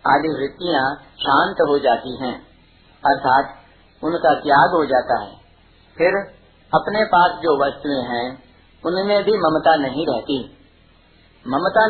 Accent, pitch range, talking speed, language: native, 135-175 Hz, 120 wpm, Hindi